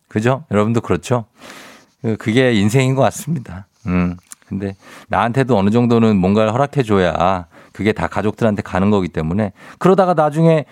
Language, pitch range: Korean, 105-150 Hz